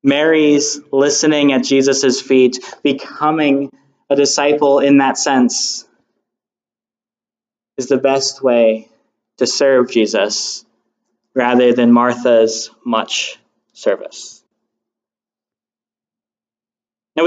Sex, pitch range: male, 130-160 Hz